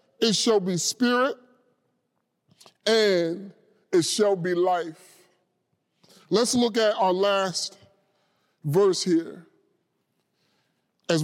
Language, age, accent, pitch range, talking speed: English, 30-49, American, 160-200 Hz, 90 wpm